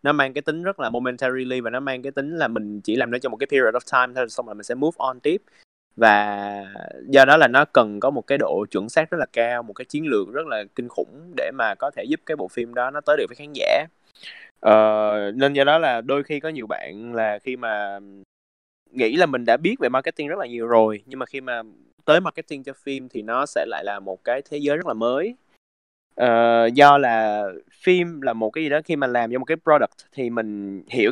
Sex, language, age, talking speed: male, Vietnamese, 20-39, 250 wpm